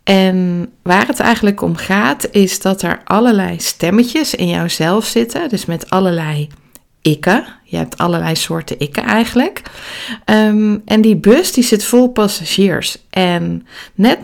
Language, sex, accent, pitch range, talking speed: Dutch, female, Dutch, 180-225 Hz, 150 wpm